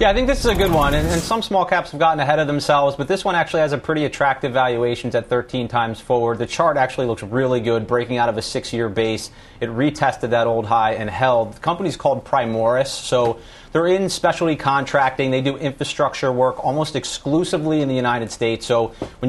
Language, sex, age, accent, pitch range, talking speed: English, male, 30-49, American, 120-140 Hz, 220 wpm